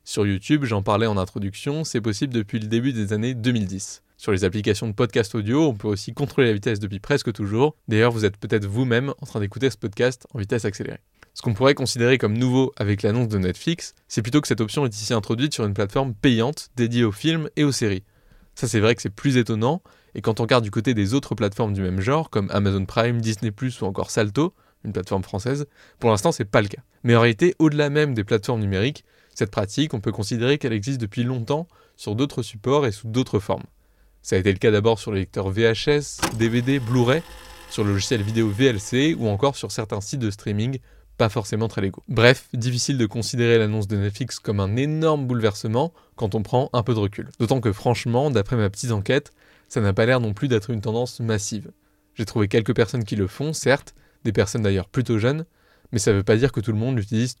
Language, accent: French, French